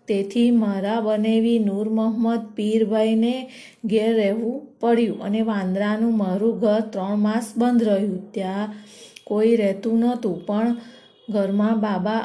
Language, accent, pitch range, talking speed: Gujarati, native, 210-230 Hz, 110 wpm